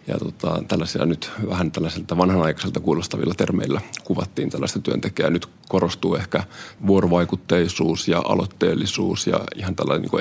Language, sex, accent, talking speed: Finnish, male, native, 130 wpm